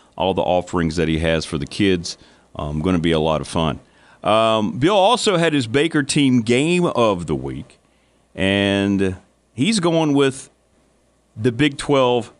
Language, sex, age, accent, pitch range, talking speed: English, male, 40-59, American, 95-130 Hz, 175 wpm